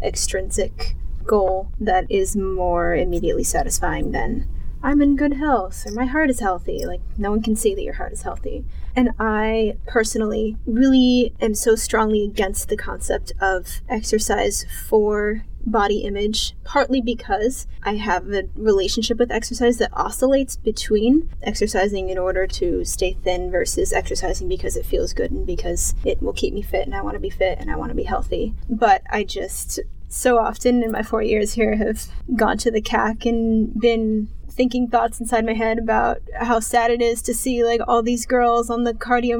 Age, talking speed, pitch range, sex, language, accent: 10-29, 185 wpm, 205-240 Hz, female, English, American